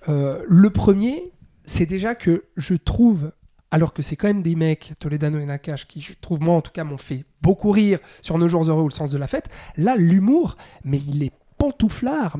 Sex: male